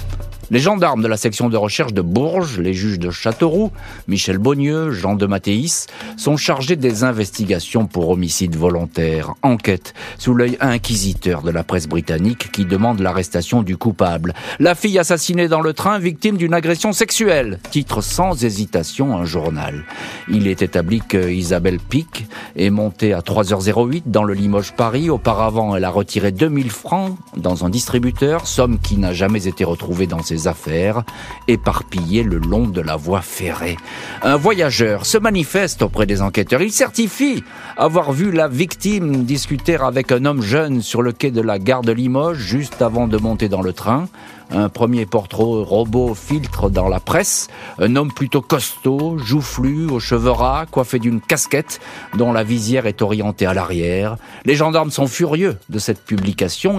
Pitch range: 95-135 Hz